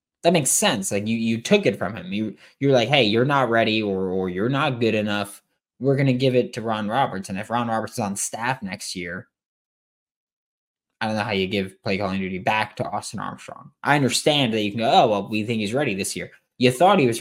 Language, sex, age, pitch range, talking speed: English, male, 20-39, 100-125 Hz, 250 wpm